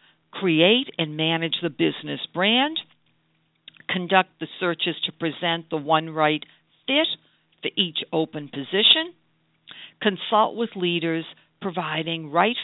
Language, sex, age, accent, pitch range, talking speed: English, female, 60-79, American, 155-225 Hz, 115 wpm